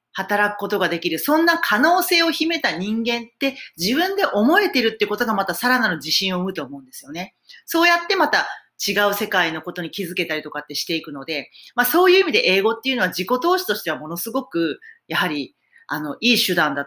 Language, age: Japanese, 40-59